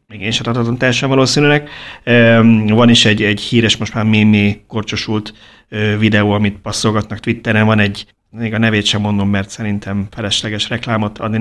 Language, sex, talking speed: Hungarian, male, 155 wpm